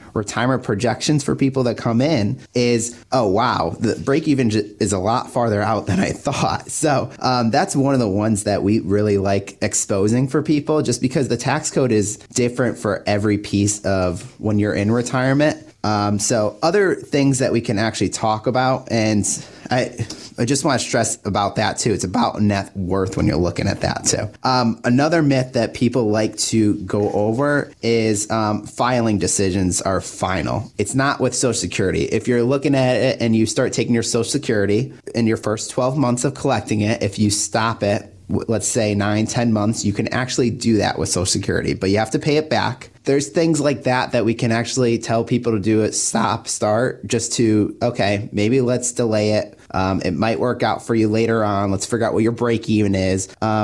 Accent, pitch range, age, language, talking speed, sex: American, 105-125 Hz, 30-49, English, 205 wpm, male